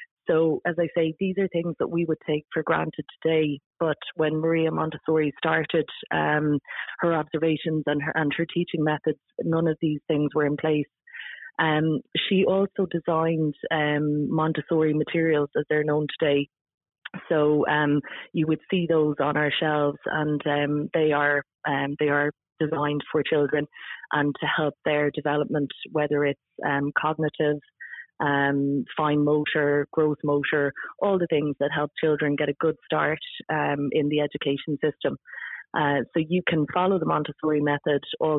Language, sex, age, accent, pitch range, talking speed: English, female, 30-49, Irish, 145-160 Hz, 160 wpm